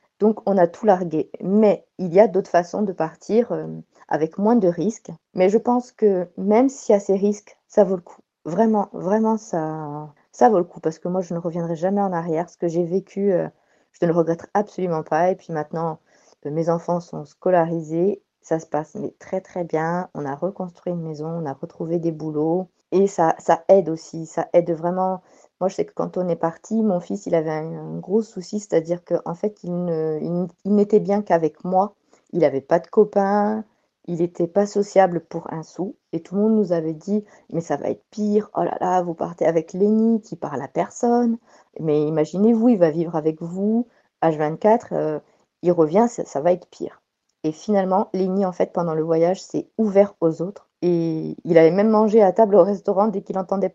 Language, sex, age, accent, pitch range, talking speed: French, female, 40-59, French, 165-200 Hz, 210 wpm